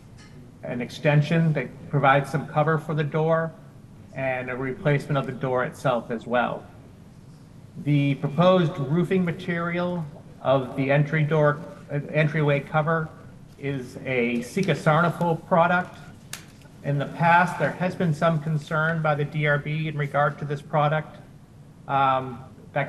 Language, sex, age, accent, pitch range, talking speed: English, male, 40-59, American, 130-155 Hz, 135 wpm